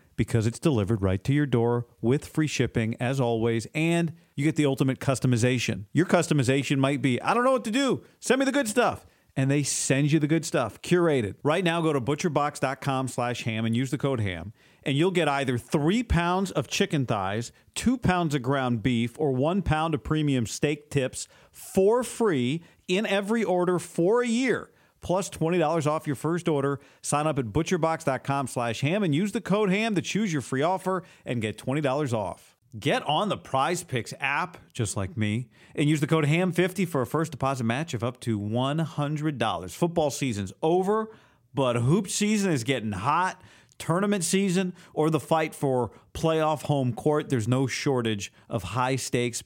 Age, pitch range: 40-59, 125-170 Hz